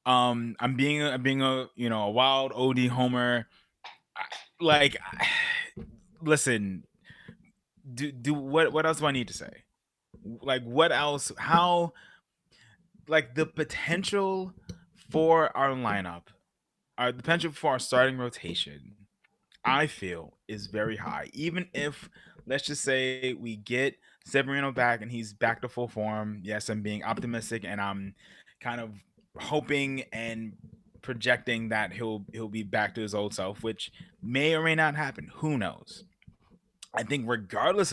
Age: 20-39